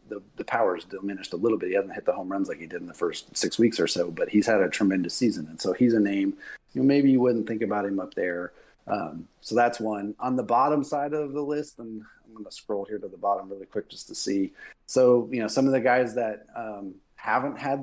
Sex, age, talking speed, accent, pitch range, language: male, 30-49, 270 wpm, American, 100-125 Hz, English